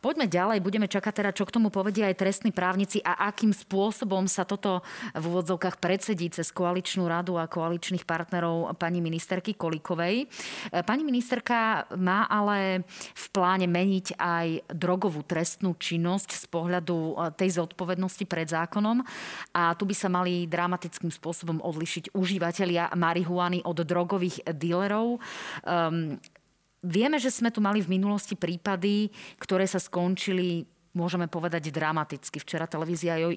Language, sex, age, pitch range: Slovak, female, 30-49, 170-195 Hz